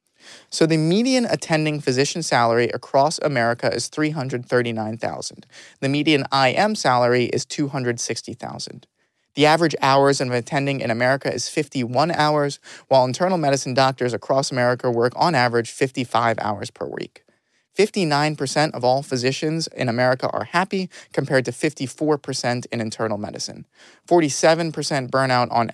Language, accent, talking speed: English, American, 130 wpm